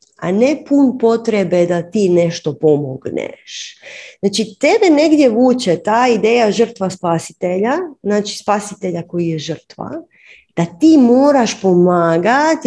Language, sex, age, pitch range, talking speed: Croatian, female, 30-49, 165-225 Hz, 120 wpm